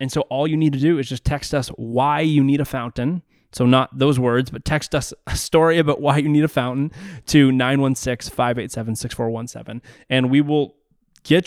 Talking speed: 195 wpm